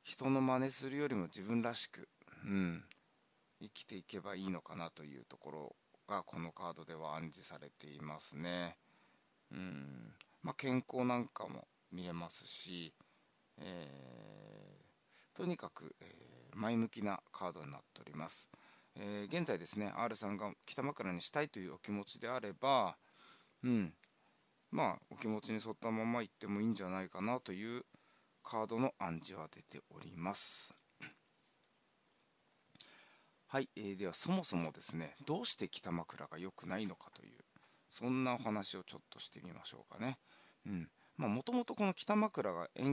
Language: Japanese